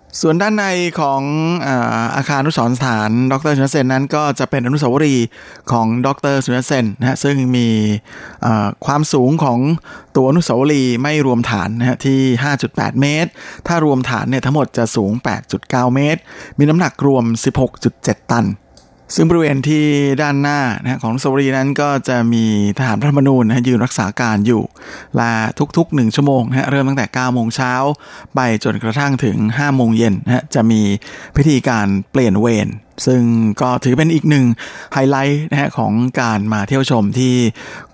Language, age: Thai, 20-39